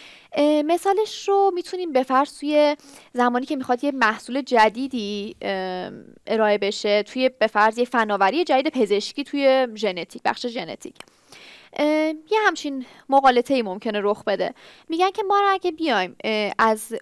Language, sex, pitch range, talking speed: Persian, female, 220-290 Hz, 125 wpm